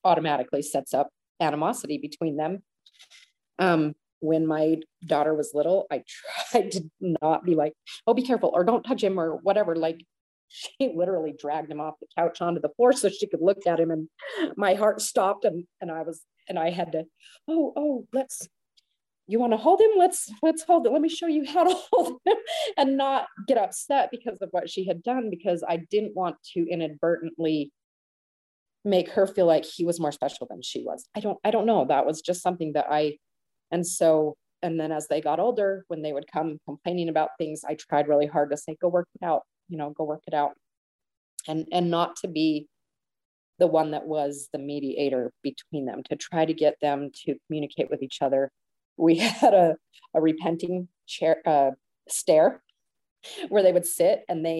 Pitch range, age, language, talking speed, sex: 155-205 Hz, 30-49, English, 200 wpm, female